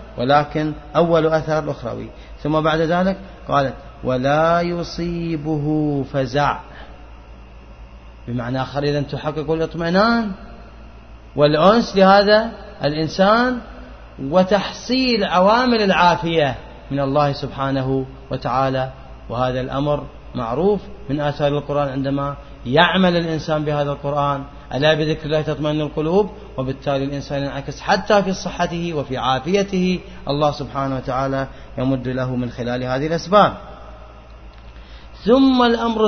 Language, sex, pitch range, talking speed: Arabic, male, 135-185 Hz, 100 wpm